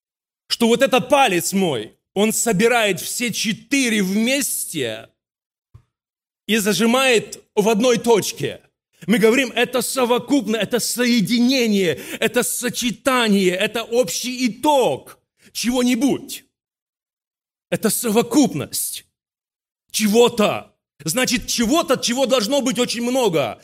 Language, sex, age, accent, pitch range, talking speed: Russian, male, 40-59, native, 200-255 Hz, 95 wpm